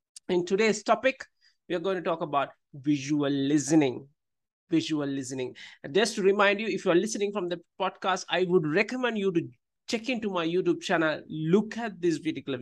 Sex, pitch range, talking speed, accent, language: male, 155-210 Hz, 175 wpm, Indian, English